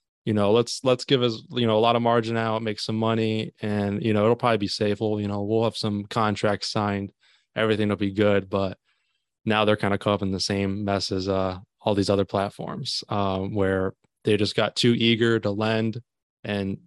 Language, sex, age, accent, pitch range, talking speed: English, male, 20-39, American, 100-120 Hz, 225 wpm